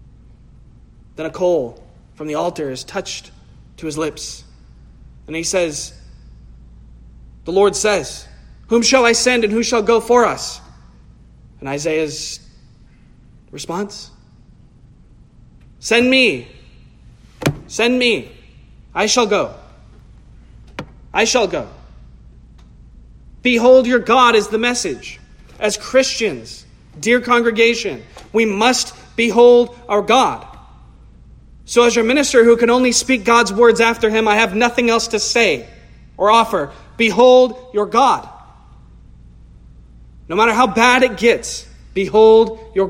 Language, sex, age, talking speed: English, male, 30-49, 120 wpm